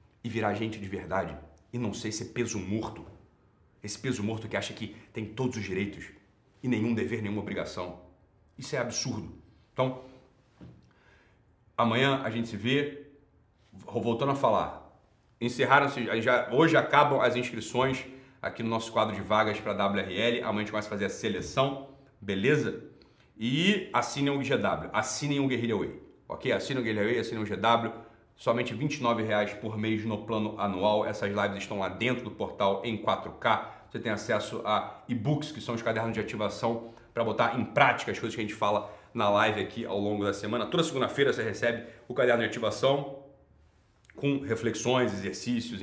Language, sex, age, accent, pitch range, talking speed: Portuguese, male, 40-59, Brazilian, 105-125 Hz, 175 wpm